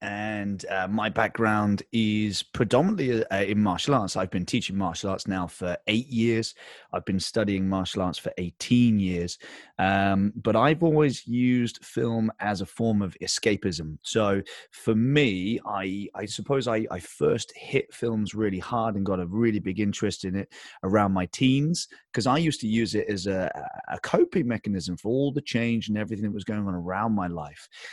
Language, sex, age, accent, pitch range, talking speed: English, male, 30-49, British, 95-115 Hz, 185 wpm